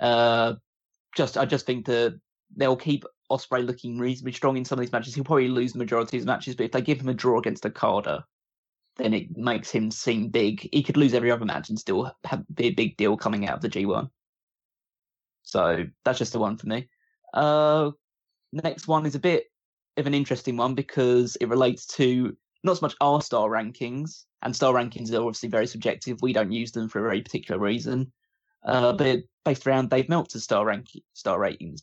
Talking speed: 215 wpm